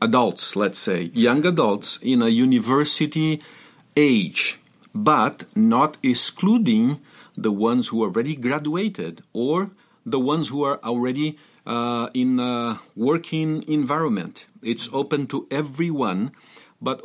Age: 50-69